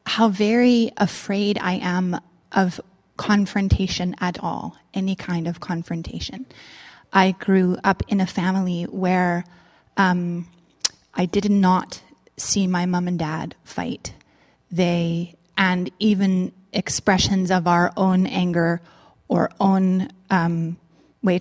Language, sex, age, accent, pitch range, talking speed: English, female, 20-39, American, 180-220 Hz, 120 wpm